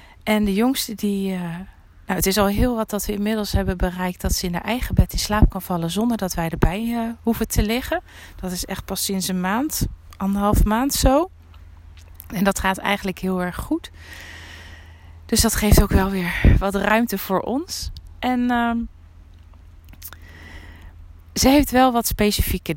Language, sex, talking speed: Dutch, female, 180 wpm